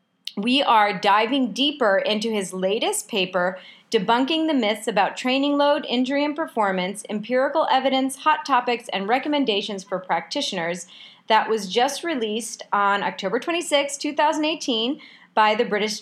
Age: 30-49